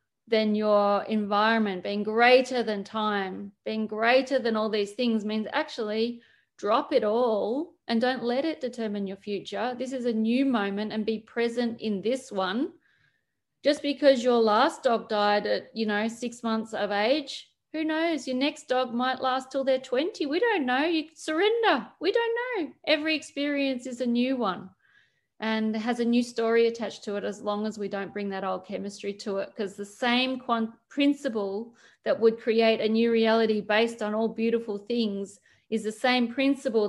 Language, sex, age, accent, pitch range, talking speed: English, female, 30-49, Australian, 210-260 Hz, 180 wpm